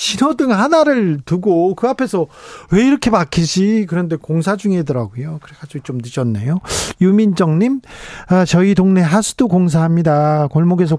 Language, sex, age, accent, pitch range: Korean, male, 40-59, native, 150-200 Hz